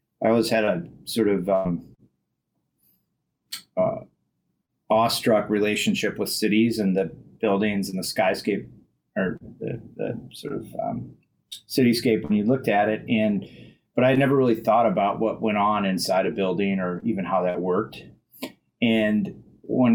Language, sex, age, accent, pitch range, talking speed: English, male, 30-49, American, 95-110 Hz, 155 wpm